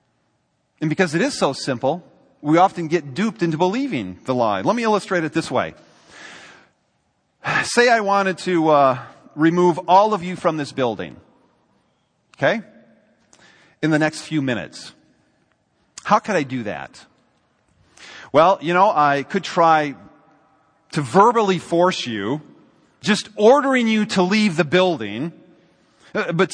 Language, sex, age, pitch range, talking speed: English, male, 40-59, 155-200 Hz, 140 wpm